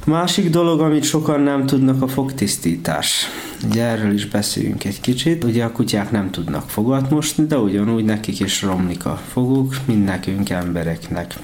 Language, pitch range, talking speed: Hungarian, 100-130 Hz, 155 wpm